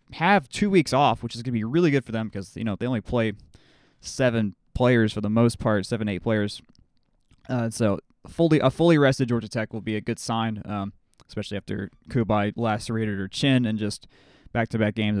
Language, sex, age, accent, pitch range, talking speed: English, male, 20-39, American, 105-140 Hz, 205 wpm